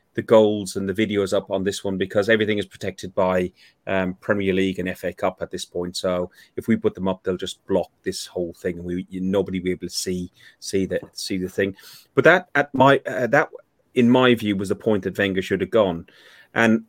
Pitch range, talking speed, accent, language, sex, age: 95-115 Hz, 240 wpm, British, English, male, 30-49